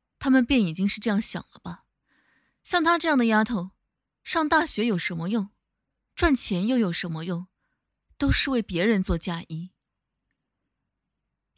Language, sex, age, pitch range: Chinese, female, 20-39, 185-265 Hz